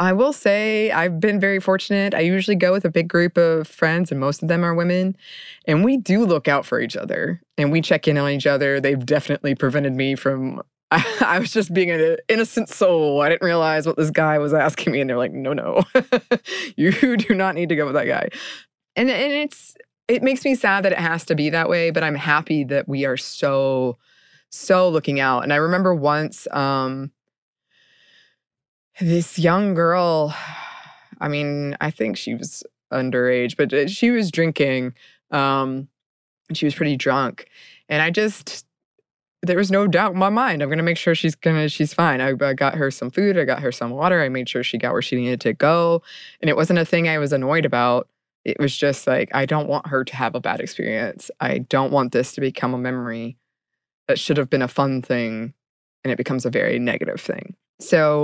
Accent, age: American, 20-39